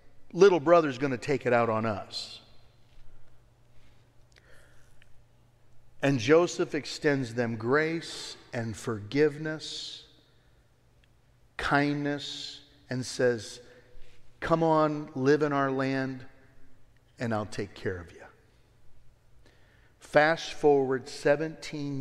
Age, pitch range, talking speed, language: 50-69, 120-150 Hz, 95 wpm, English